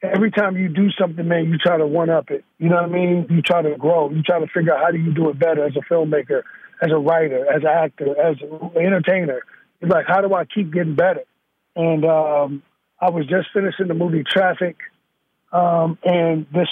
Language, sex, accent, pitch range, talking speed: English, male, American, 160-185 Hz, 225 wpm